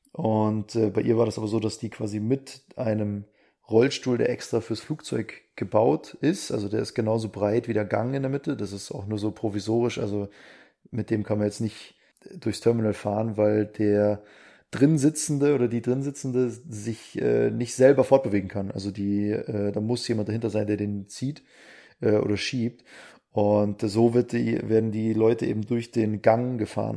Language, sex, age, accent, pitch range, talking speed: German, male, 20-39, German, 105-125 Hz, 180 wpm